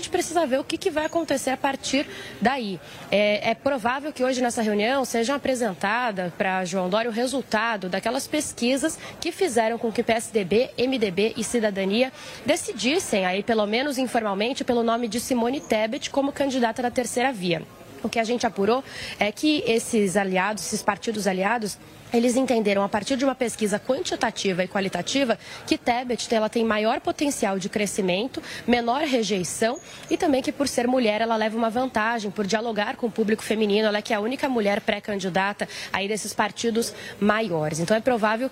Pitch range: 210-260 Hz